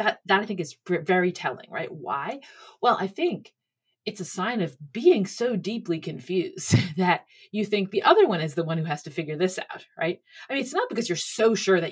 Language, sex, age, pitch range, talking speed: English, female, 30-49, 170-220 Hz, 230 wpm